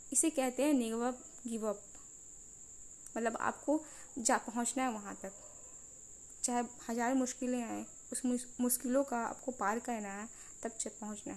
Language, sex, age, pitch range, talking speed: Hindi, female, 20-39, 220-255 Hz, 135 wpm